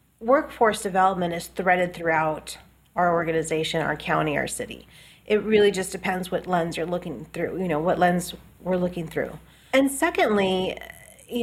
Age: 30-49